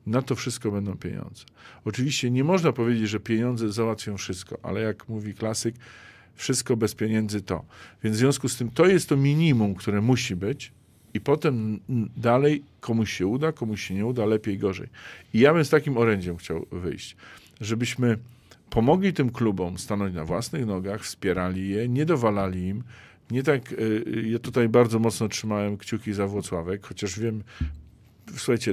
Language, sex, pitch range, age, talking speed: Polish, male, 100-120 Hz, 50-69, 165 wpm